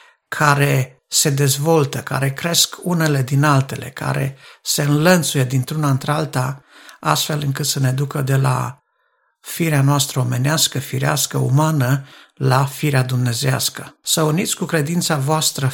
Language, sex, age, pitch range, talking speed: Romanian, male, 60-79, 135-155 Hz, 130 wpm